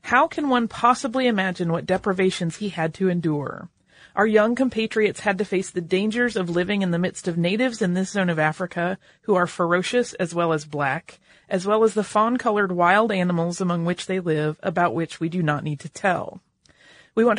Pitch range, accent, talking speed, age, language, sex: 175-240 Hz, American, 205 wpm, 30-49, English, female